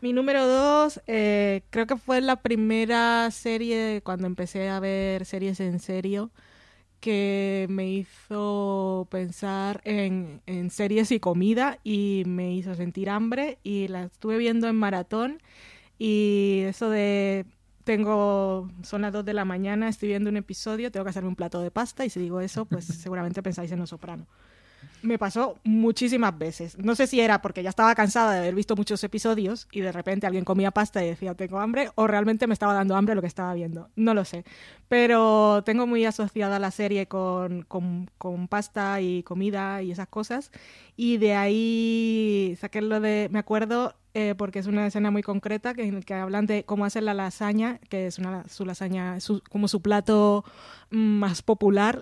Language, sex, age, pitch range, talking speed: Spanish, female, 20-39, 190-220 Hz, 180 wpm